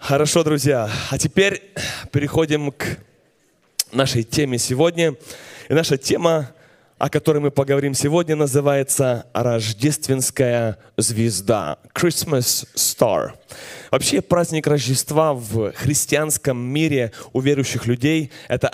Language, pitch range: Russian, 135-165 Hz